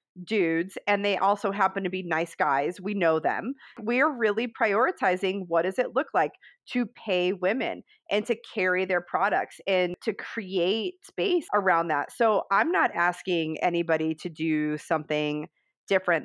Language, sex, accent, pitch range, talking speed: English, female, American, 165-200 Hz, 160 wpm